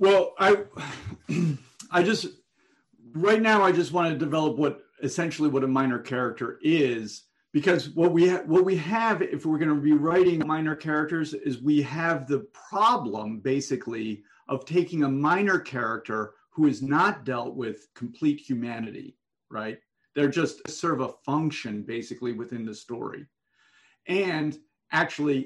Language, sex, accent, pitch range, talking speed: English, male, American, 130-170 Hz, 150 wpm